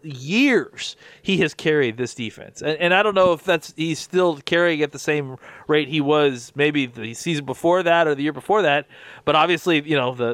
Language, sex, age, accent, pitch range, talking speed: English, male, 30-49, American, 130-170 Hz, 215 wpm